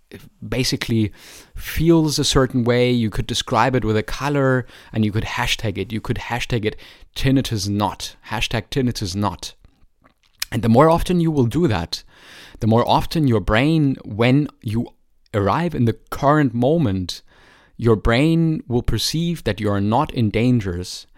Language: English